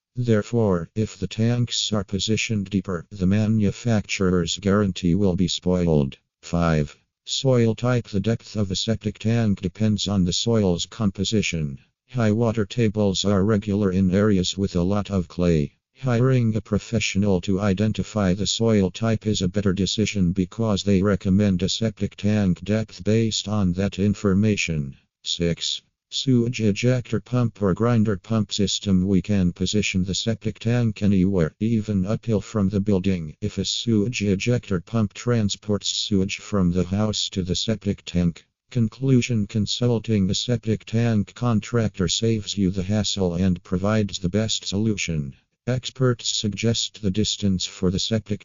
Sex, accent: male, American